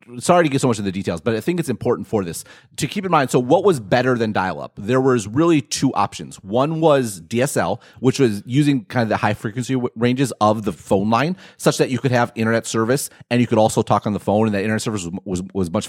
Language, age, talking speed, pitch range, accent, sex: English, 30-49, 270 wpm, 105-135 Hz, American, male